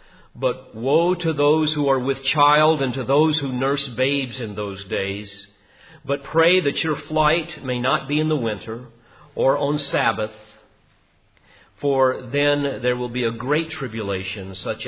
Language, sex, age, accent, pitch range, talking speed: English, male, 50-69, American, 110-140 Hz, 160 wpm